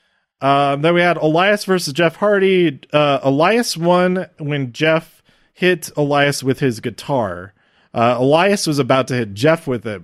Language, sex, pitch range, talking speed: English, male, 120-165 Hz, 160 wpm